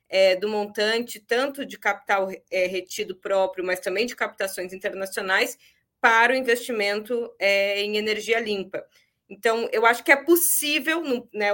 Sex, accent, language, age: female, Brazilian, Portuguese, 20-39